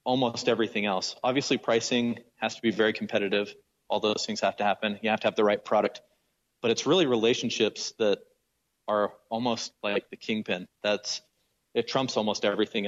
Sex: male